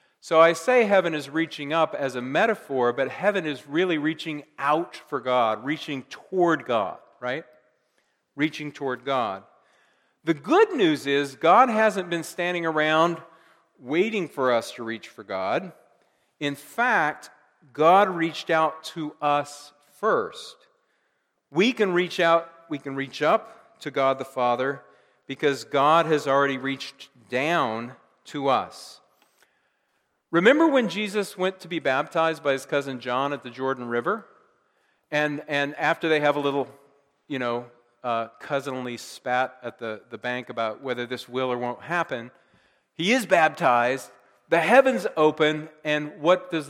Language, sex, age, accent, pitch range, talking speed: English, male, 50-69, American, 130-165 Hz, 150 wpm